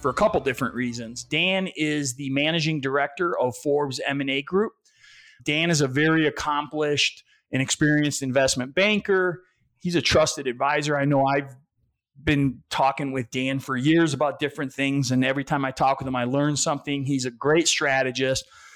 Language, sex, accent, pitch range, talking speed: English, male, American, 130-155 Hz, 170 wpm